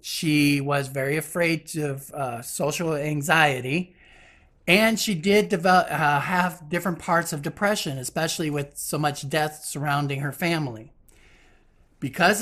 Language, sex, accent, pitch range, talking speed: English, male, American, 145-180 Hz, 130 wpm